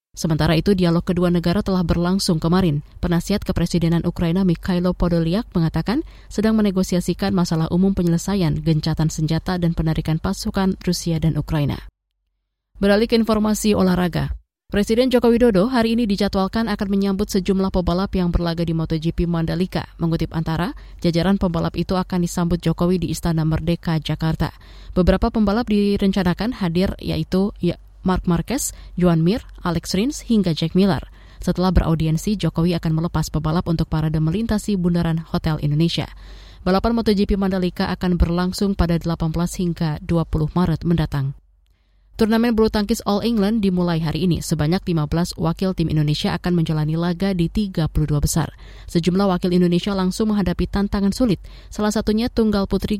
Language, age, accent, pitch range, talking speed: Indonesian, 20-39, native, 160-195 Hz, 145 wpm